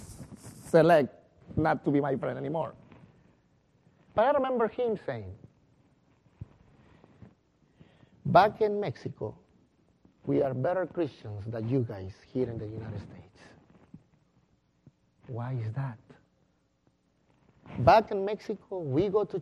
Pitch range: 125-170 Hz